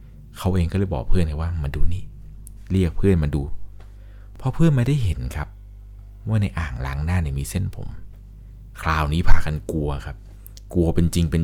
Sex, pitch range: male, 80-100 Hz